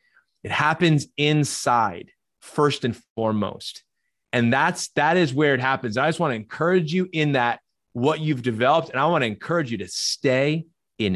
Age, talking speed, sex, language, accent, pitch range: 30-49, 175 wpm, male, English, American, 110-145 Hz